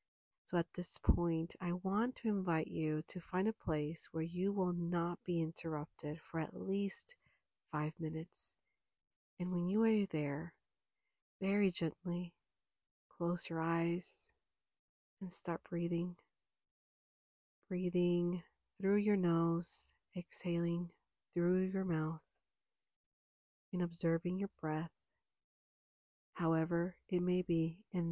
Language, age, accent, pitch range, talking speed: English, 40-59, American, 165-185 Hz, 115 wpm